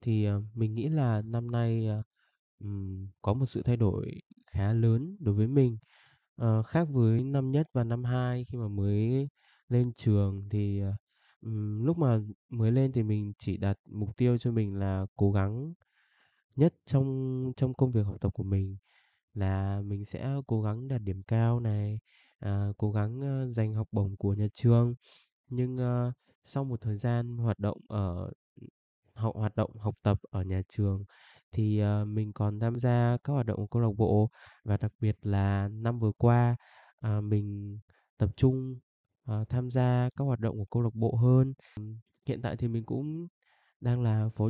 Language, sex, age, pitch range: Vietnamese, male, 20-39, 105-125 Hz